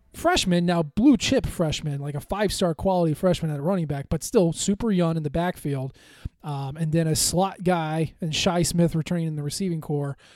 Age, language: 20-39, English